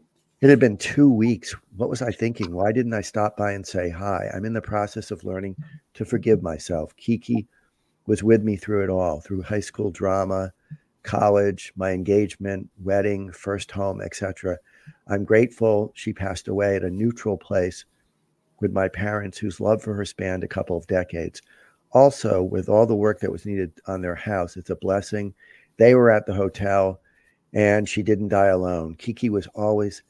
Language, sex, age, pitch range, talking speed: English, male, 50-69, 95-110 Hz, 185 wpm